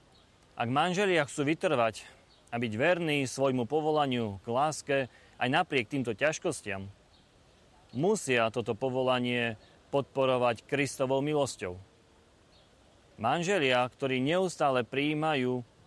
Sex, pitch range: male, 120-155 Hz